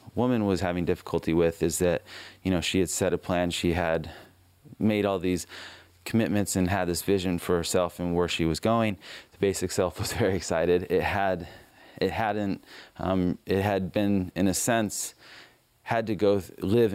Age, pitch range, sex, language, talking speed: 30-49, 85-100 Hz, male, English, 185 wpm